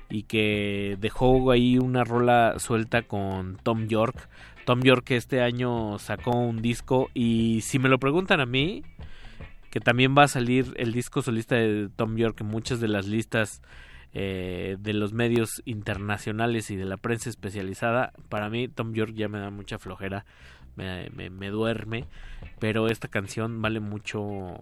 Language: Spanish